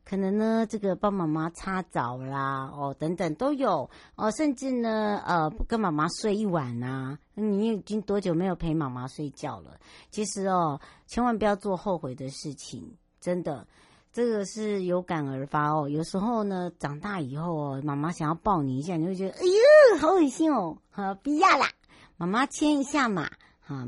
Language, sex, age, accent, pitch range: Chinese, male, 60-79, American, 150-210 Hz